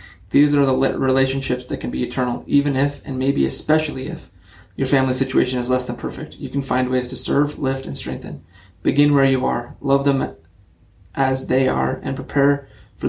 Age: 20-39